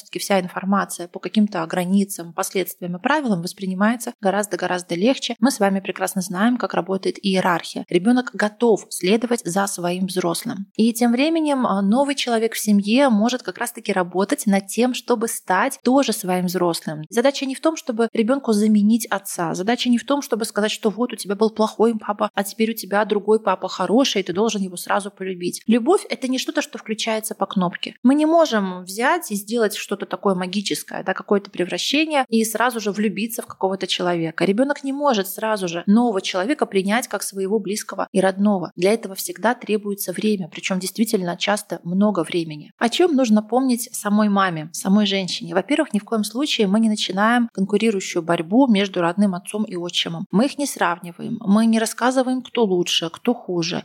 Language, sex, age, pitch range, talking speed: Russian, female, 20-39, 190-235 Hz, 185 wpm